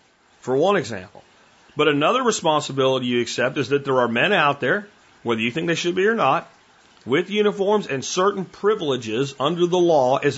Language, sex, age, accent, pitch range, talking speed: English, male, 40-59, American, 150-210 Hz, 185 wpm